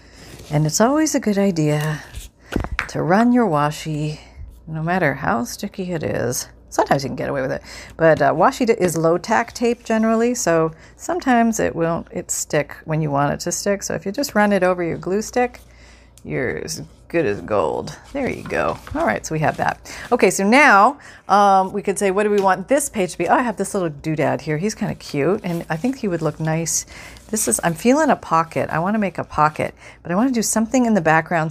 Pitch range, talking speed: 160-220 Hz, 230 wpm